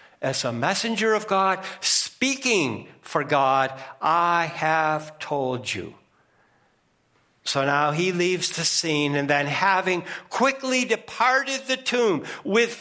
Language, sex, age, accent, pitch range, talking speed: English, male, 60-79, American, 165-230 Hz, 120 wpm